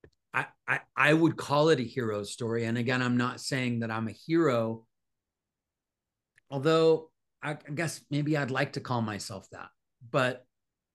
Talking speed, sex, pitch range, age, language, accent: 165 wpm, male, 115-150 Hz, 40-59, English, American